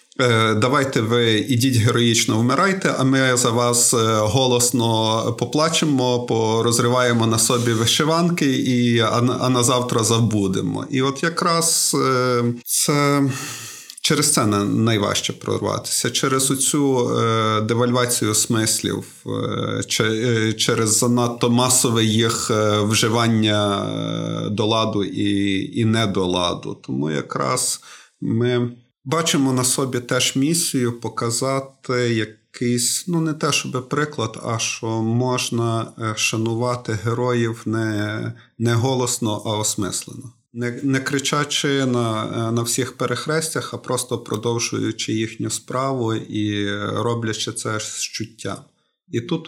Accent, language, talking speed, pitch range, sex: native, Ukrainian, 105 wpm, 110-130 Hz, male